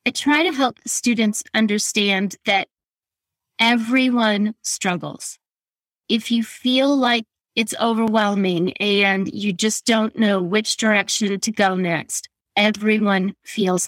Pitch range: 200-235 Hz